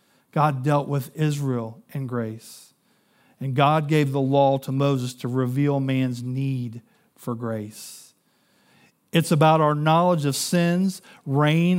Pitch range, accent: 135-165 Hz, American